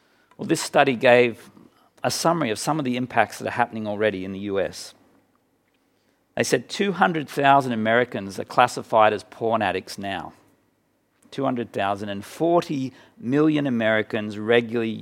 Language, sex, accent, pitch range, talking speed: English, male, Australian, 100-125 Hz, 135 wpm